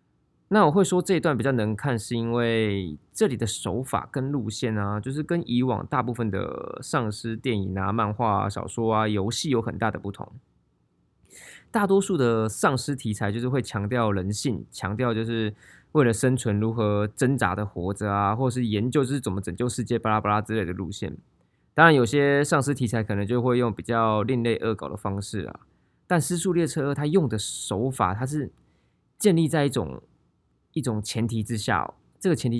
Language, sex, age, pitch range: Chinese, male, 20-39, 105-130 Hz